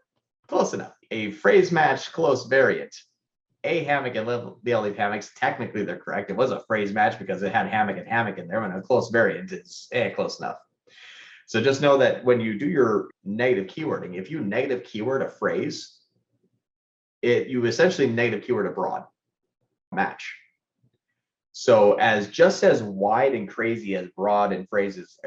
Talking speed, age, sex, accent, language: 175 wpm, 30-49, male, American, English